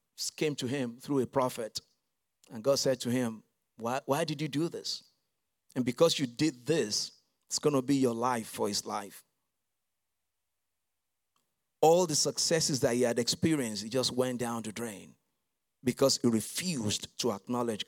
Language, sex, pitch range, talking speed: English, male, 120-165 Hz, 165 wpm